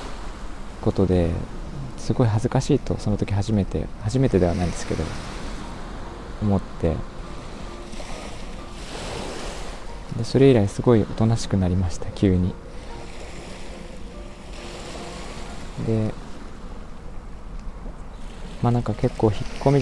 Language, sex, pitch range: Japanese, male, 90-115 Hz